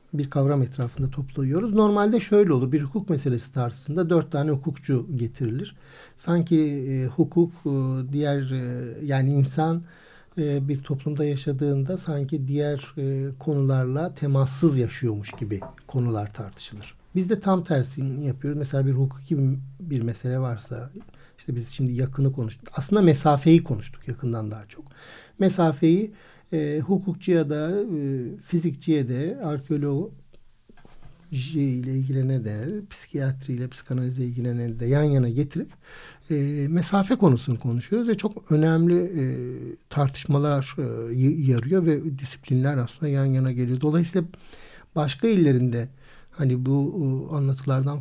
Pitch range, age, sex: 130-160 Hz, 60-79, male